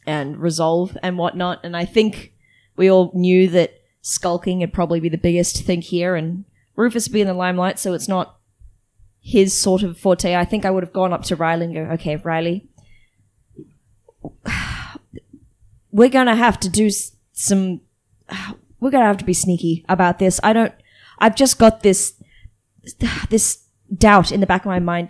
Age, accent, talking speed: 20-39, Australian, 175 wpm